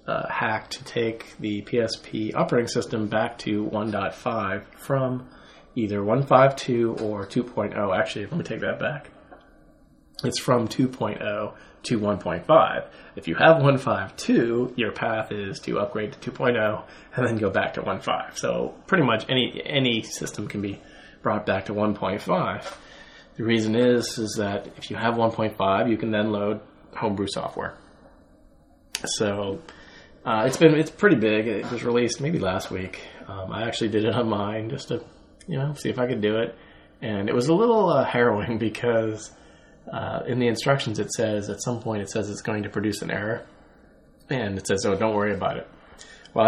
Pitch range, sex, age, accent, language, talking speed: 105-120 Hz, male, 20-39, American, English, 175 wpm